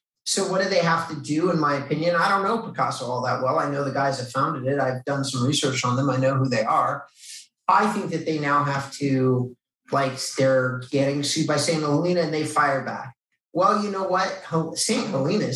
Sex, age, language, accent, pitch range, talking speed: male, 30-49, English, American, 130-165 Hz, 230 wpm